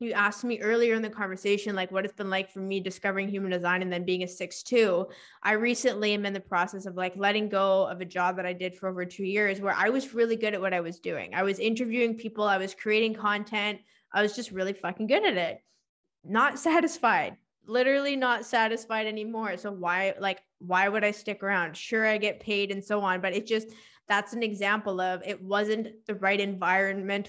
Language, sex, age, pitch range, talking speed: English, female, 20-39, 190-220 Hz, 225 wpm